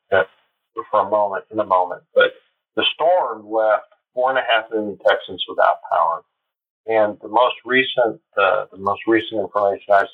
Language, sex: English, male